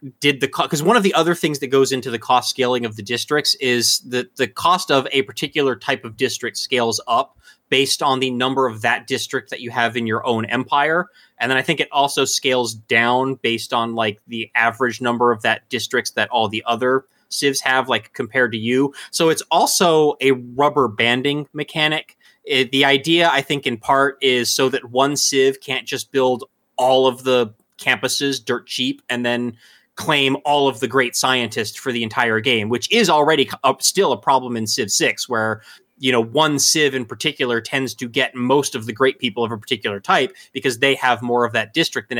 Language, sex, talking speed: English, male, 210 wpm